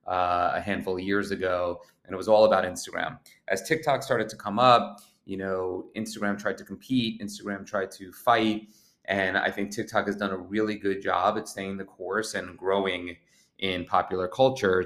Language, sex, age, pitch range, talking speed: English, male, 30-49, 90-110 Hz, 190 wpm